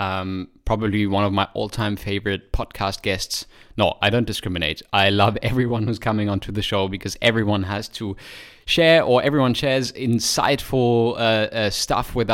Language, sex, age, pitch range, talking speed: English, male, 20-39, 105-125 Hz, 165 wpm